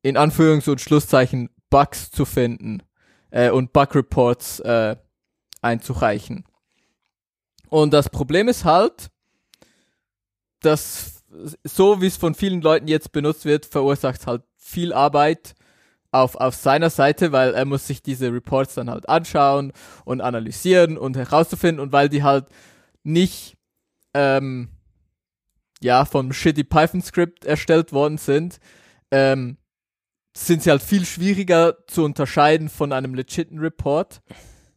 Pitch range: 125-155 Hz